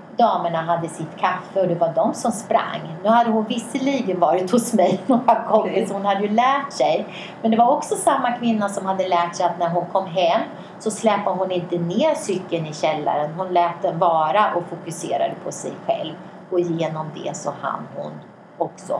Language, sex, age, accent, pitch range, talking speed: Swedish, female, 30-49, native, 170-215 Hz, 200 wpm